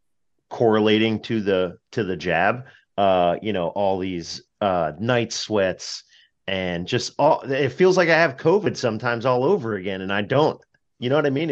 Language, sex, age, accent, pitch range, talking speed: English, male, 30-49, American, 100-130 Hz, 180 wpm